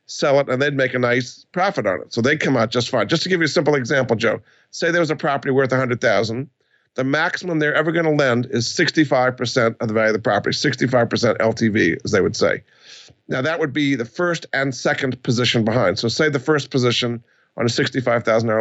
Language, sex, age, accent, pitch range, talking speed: English, male, 50-69, American, 120-150 Hz, 230 wpm